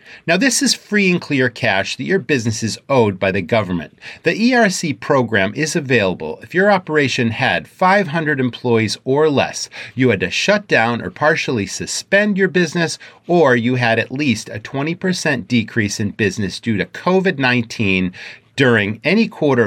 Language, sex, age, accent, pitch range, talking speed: English, male, 40-59, American, 115-175 Hz, 165 wpm